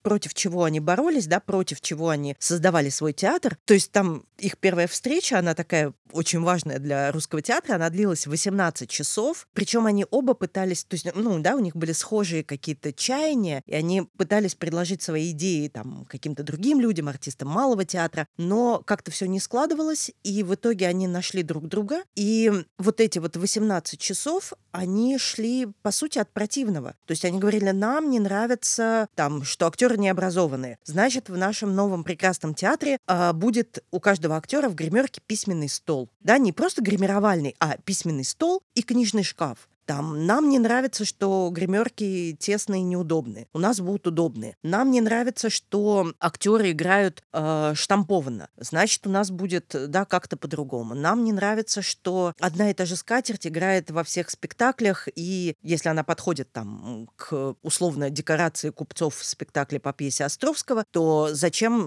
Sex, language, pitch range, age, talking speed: female, Russian, 160-215 Hz, 30-49, 165 wpm